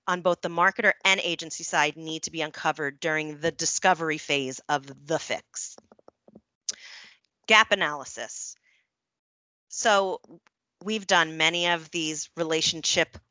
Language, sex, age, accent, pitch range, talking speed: English, female, 30-49, American, 165-210 Hz, 120 wpm